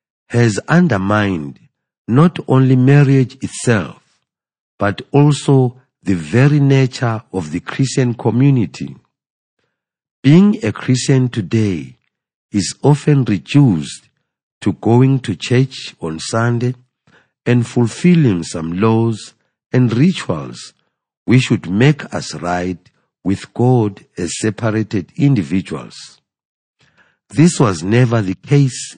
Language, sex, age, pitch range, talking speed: English, male, 50-69, 95-140 Hz, 100 wpm